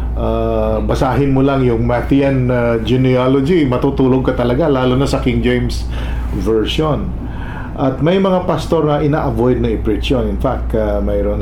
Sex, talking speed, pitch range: male, 160 wpm, 105-130 Hz